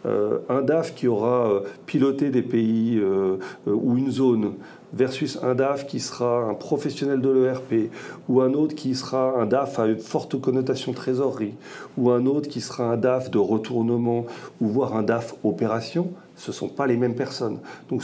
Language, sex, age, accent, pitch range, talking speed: French, male, 40-59, French, 120-150 Hz, 185 wpm